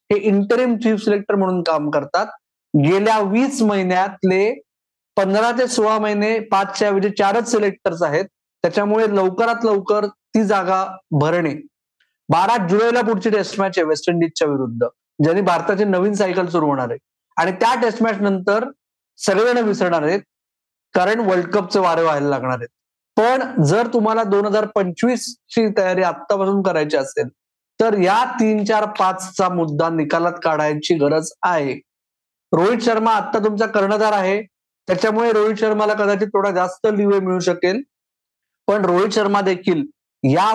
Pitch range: 180-220 Hz